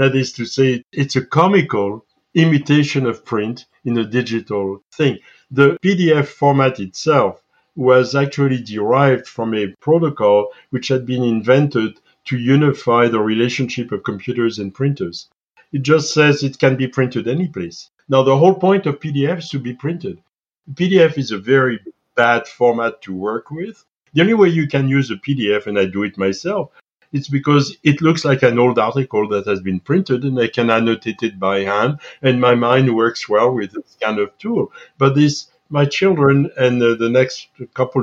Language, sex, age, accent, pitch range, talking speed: English, male, 60-79, French, 115-140 Hz, 180 wpm